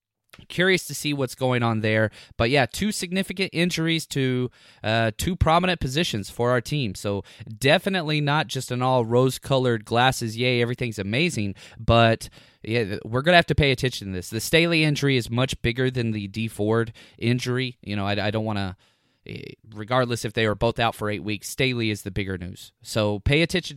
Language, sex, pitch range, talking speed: English, male, 115-160 Hz, 190 wpm